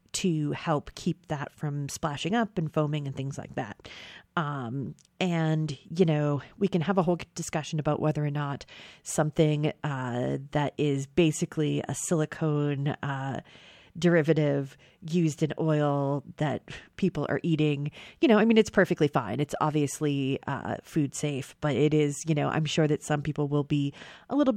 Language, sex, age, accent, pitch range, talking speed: English, female, 30-49, American, 145-170 Hz, 170 wpm